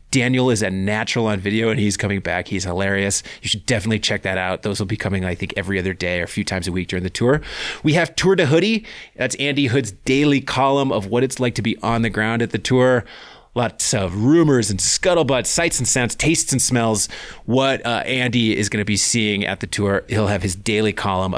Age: 30-49